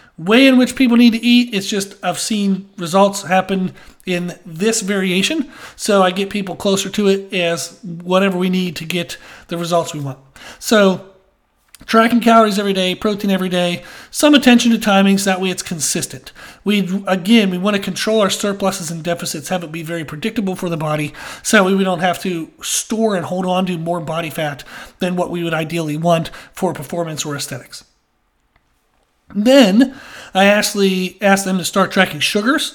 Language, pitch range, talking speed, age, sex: English, 175-220 Hz, 185 wpm, 40-59, male